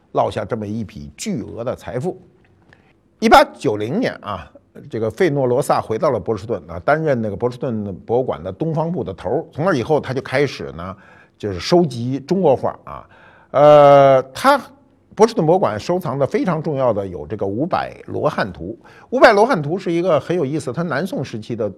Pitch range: 115-175 Hz